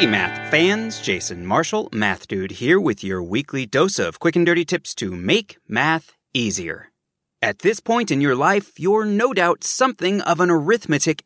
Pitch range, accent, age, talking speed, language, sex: 150-205 Hz, American, 30-49, 175 wpm, English, male